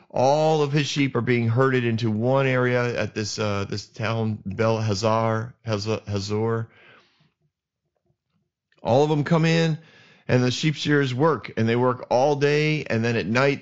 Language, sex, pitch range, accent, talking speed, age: English, male, 115-155 Hz, American, 165 wpm, 30-49